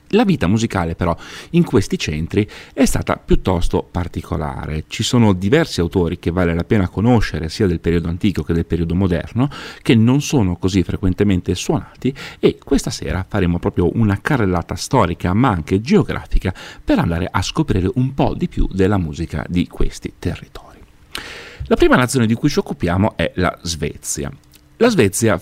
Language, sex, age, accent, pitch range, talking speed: Italian, male, 40-59, native, 85-110 Hz, 165 wpm